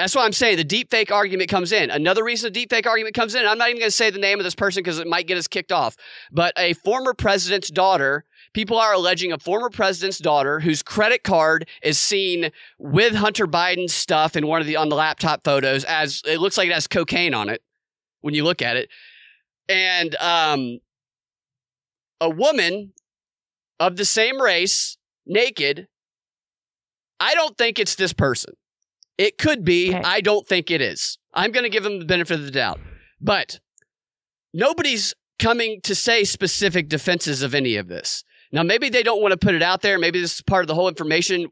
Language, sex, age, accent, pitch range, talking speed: English, male, 30-49, American, 165-210 Hz, 205 wpm